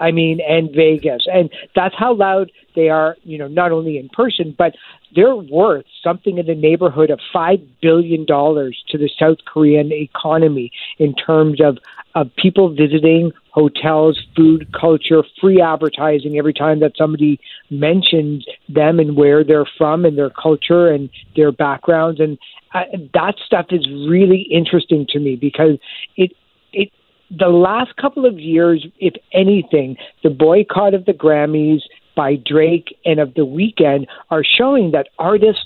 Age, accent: 50-69, American